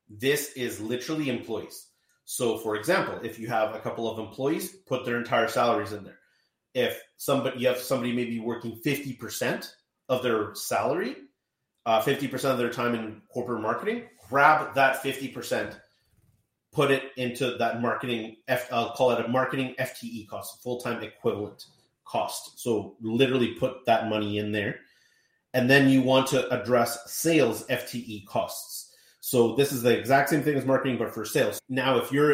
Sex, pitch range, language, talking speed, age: male, 115-135 Hz, English, 165 wpm, 30-49